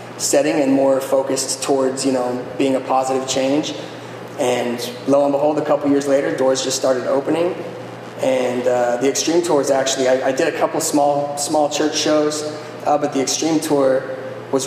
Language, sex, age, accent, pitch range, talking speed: English, male, 20-39, American, 130-145 Hz, 175 wpm